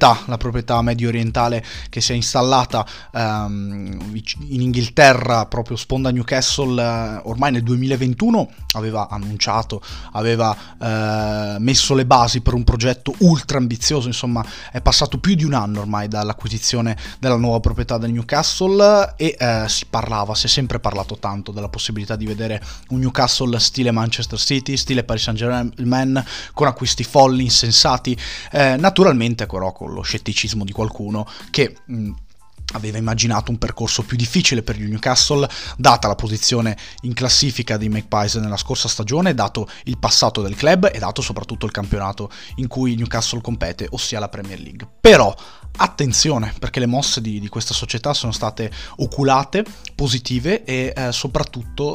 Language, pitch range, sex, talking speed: Italian, 110-130 Hz, male, 150 wpm